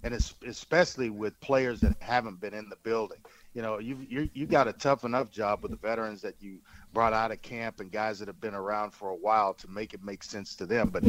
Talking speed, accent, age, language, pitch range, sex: 245 wpm, American, 40-59, English, 105-125 Hz, male